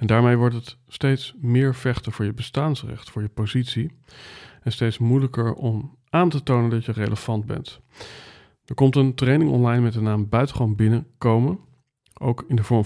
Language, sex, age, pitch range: Dutch, male, 40-59, 110-130 Hz